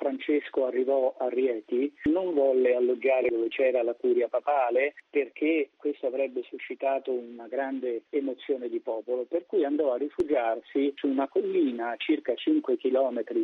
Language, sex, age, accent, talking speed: Italian, male, 40-59, native, 145 wpm